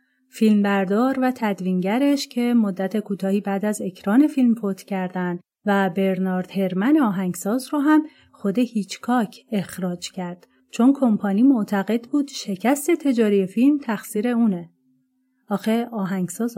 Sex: female